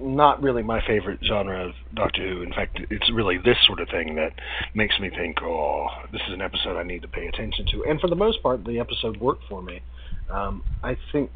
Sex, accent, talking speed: male, American, 235 wpm